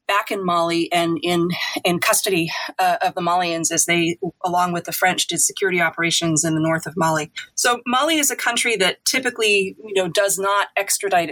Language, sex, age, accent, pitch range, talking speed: English, female, 30-49, American, 175-225 Hz, 195 wpm